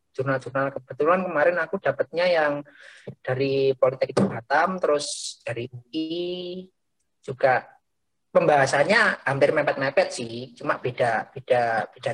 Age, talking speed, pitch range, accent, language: 20-39, 110 wpm, 130-180 Hz, native, Indonesian